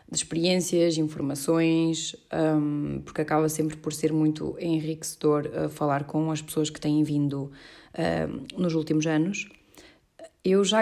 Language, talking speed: Portuguese, 120 wpm